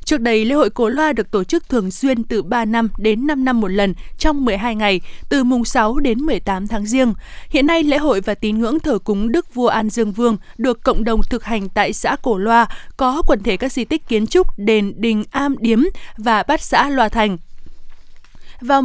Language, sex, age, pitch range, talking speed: Vietnamese, female, 20-39, 215-275 Hz, 225 wpm